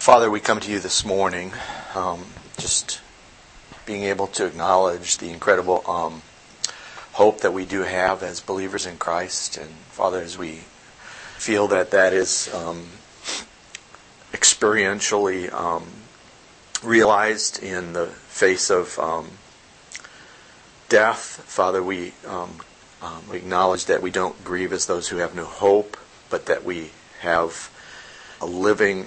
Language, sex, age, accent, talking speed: English, male, 40-59, American, 130 wpm